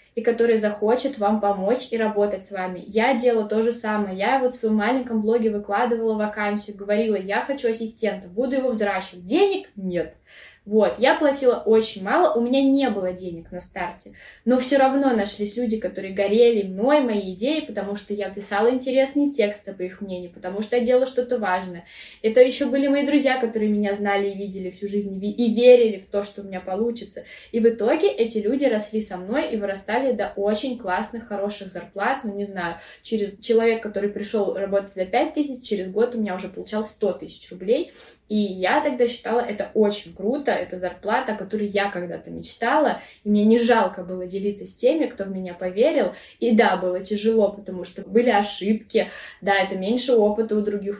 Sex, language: female, Russian